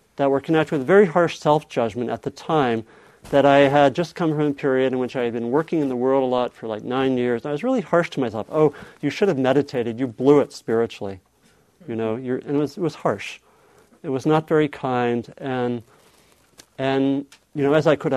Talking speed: 230 wpm